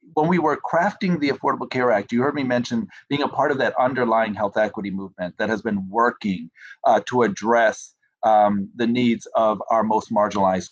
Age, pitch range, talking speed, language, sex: 40-59, 110-140 Hz, 195 wpm, English, male